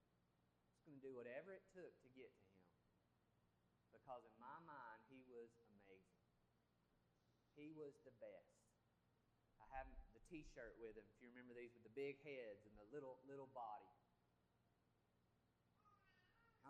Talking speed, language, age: 140 wpm, English, 30-49